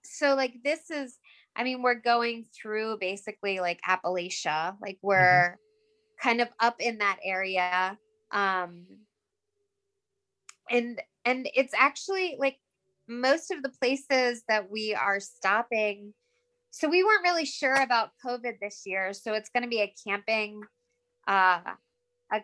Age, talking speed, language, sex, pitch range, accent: 20-39, 140 wpm, English, female, 190-250 Hz, American